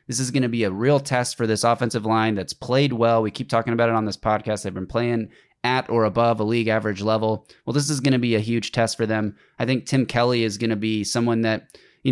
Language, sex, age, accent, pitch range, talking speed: English, male, 20-39, American, 110-120 Hz, 270 wpm